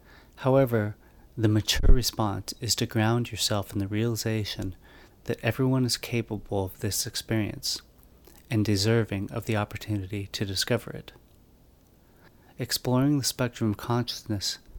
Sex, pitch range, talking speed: male, 100-120 Hz, 125 wpm